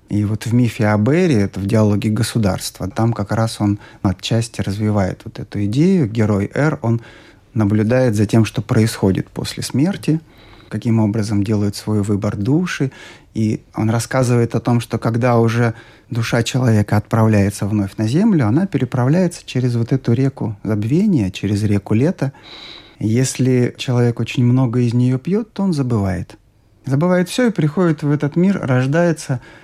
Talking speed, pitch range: 155 wpm, 110-140 Hz